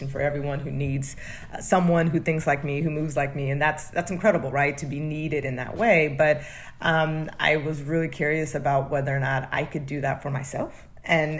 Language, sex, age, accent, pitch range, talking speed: English, female, 30-49, American, 140-160 Hz, 215 wpm